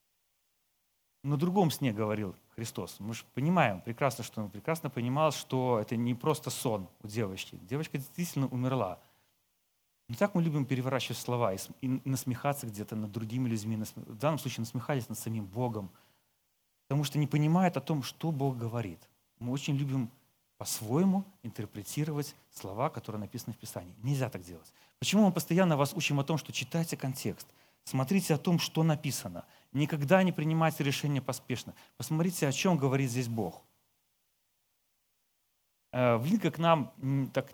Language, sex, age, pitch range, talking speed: Russian, male, 30-49, 115-155 Hz, 150 wpm